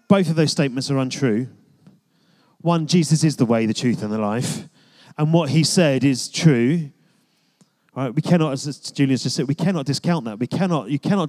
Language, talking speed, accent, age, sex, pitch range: English, 200 wpm, British, 30-49, male, 130-190 Hz